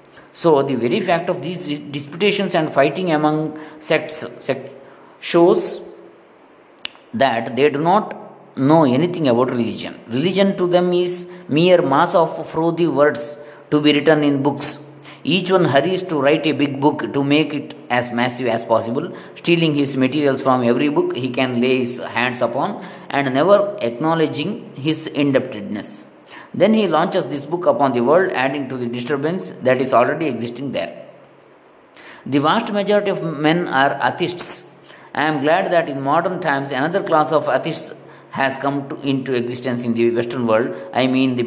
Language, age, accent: English, 20-39, Indian